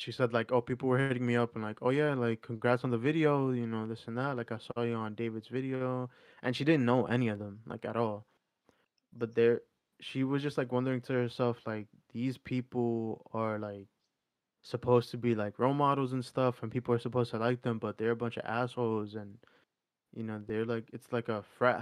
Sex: male